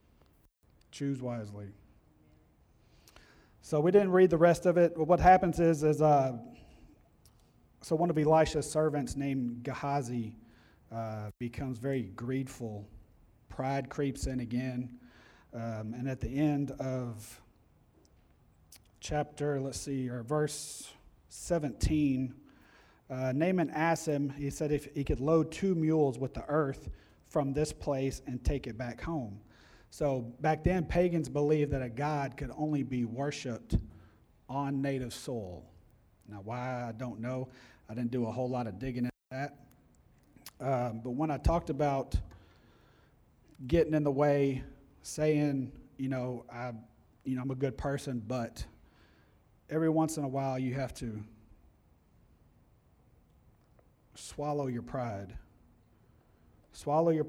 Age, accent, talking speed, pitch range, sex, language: 40-59, American, 135 wpm, 115-150 Hz, male, English